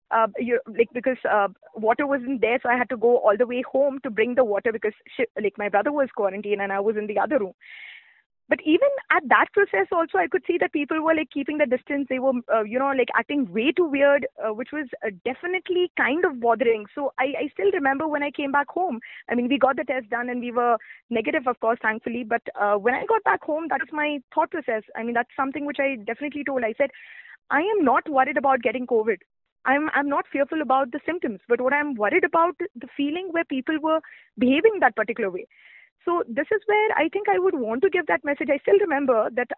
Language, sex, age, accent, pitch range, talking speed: English, female, 20-39, Indian, 240-330 Hz, 240 wpm